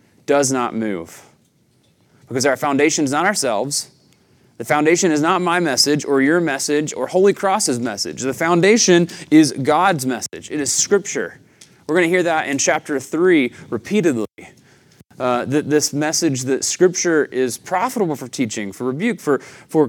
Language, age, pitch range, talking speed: English, 30-49, 130-185 Hz, 160 wpm